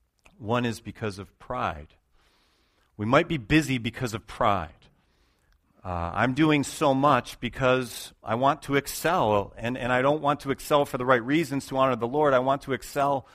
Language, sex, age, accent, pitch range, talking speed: Italian, male, 40-59, American, 100-140 Hz, 185 wpm